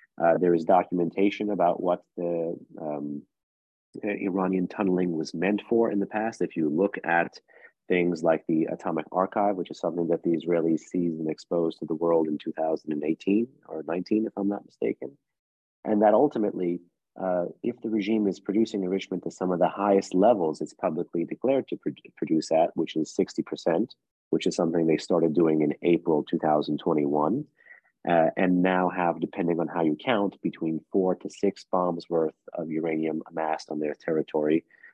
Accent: American